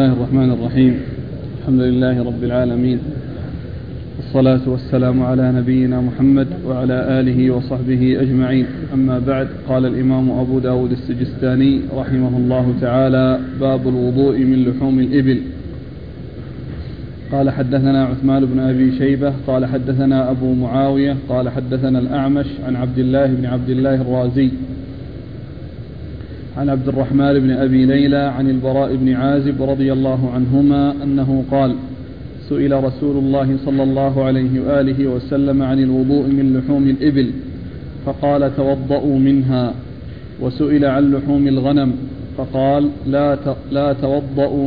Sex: male